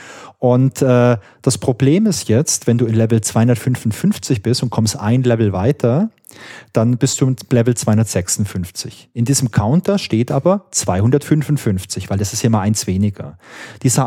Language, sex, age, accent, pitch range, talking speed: German, male, 30-49, German, 110-145 Hz, 160 wpm